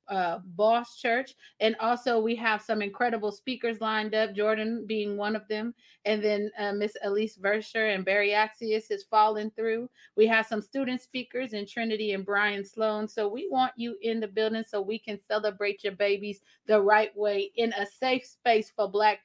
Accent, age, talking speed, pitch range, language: American, 30-49, 190 wpm, 205-235 Hz, English